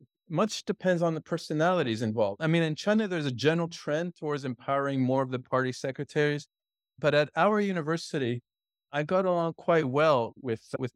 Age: 40-59